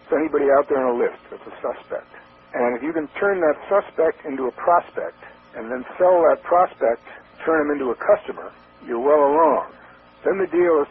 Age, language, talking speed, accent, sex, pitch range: 60-79, English, 200 wpm, American, male, 130-175 Hz